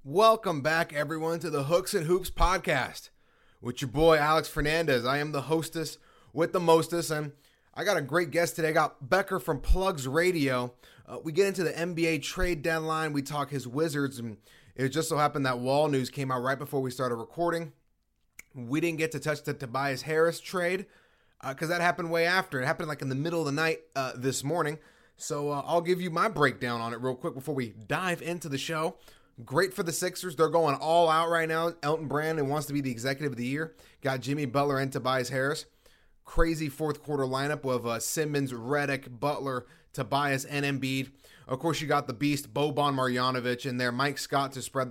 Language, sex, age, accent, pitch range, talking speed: English, male, 30-49, American, 135-160 Hz, 210 wpm